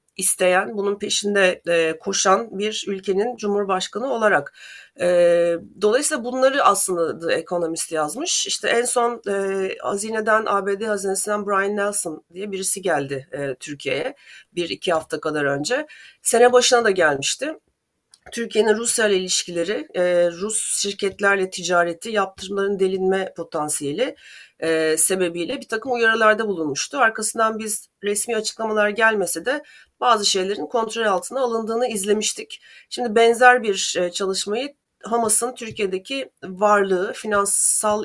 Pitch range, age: 175-225 Hz, 40-59